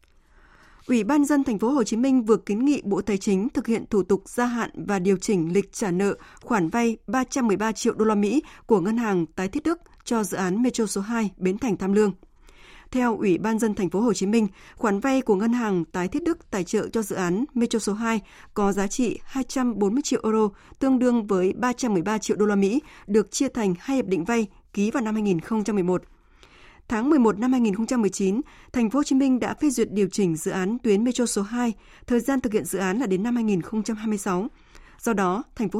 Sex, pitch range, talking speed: female, 200-240 Hz, 225 wpm